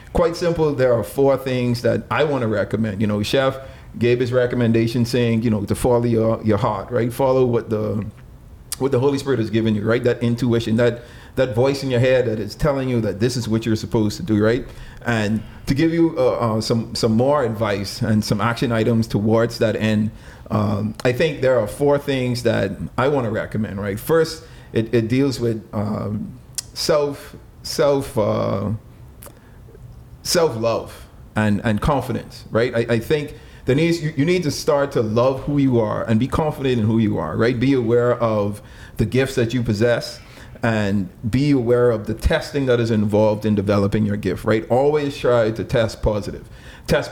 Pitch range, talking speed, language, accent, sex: 110-130 Hz, 195 wpm, English, American, male